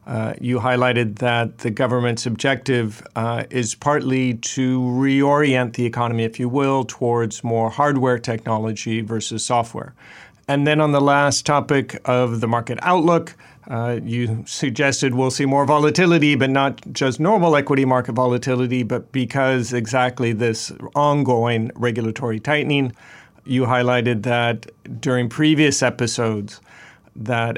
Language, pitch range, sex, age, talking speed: English, 115-140 Hz, male, 40-59, 135 wpm